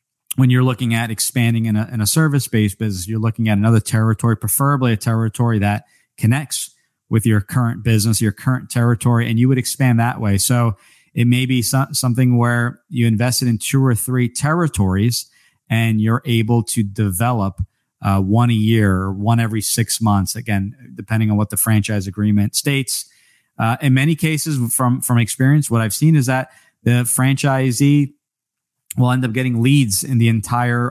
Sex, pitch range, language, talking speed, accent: male, 110-130 Hz, English, 180 wpm, American